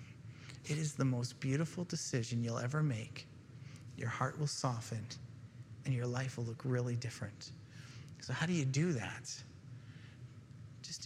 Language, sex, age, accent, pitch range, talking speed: English, male, 30-49, American, 125-145 Hz, 145 wpm